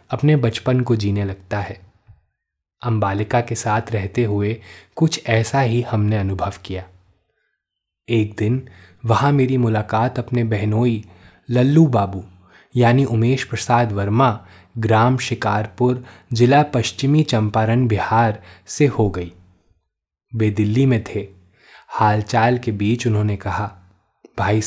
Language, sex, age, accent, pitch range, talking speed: Hindi, male, 20-39, native, 100-125 Hz, 120 wpm